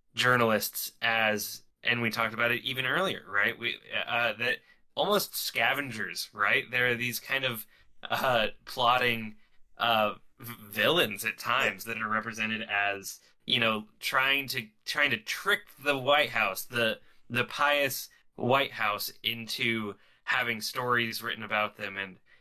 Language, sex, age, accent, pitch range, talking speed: English, male, 20-39, American, 110-125 Hz, 140 wpm